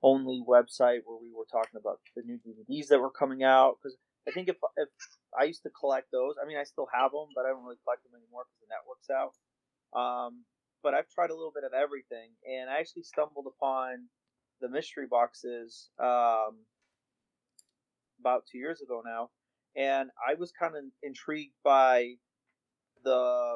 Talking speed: 185 wpm